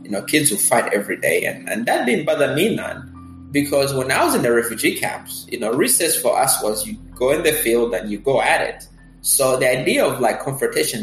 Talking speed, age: 235 wpm, 20-39